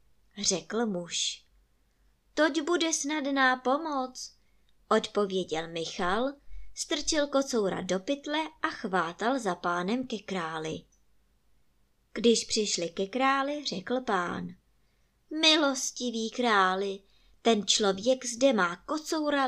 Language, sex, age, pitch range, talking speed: Czech, male, 20-39, 190-275 Hz, 95 wpm